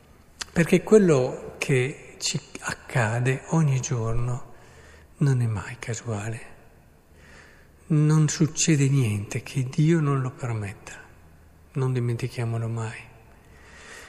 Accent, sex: native, male